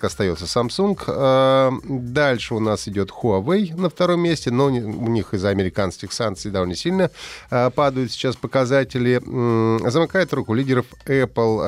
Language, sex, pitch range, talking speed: Russian, male, 100-135 Hz, 130 wpm